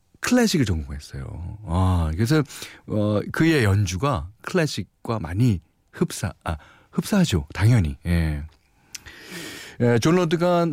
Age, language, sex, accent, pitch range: 40-59, Korean, male, native, 85-125 Hz